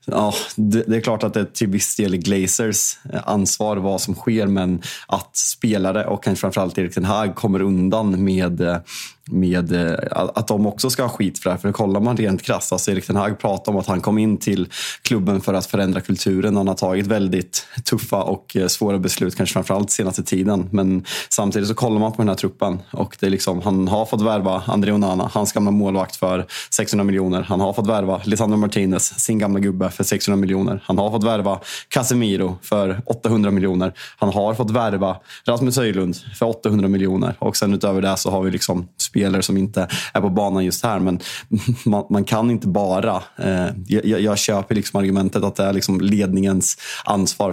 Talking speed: 200 wpm